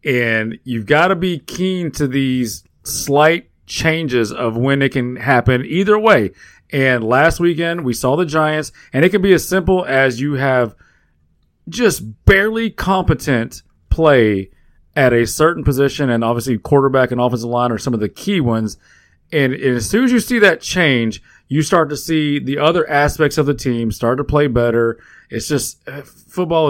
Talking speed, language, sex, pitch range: 180 wpm, English, male, 120-165 Hz